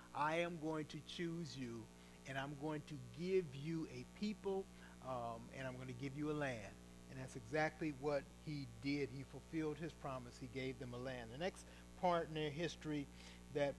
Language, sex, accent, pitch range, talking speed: English, male, American, 130-175 Hz, 195 wpm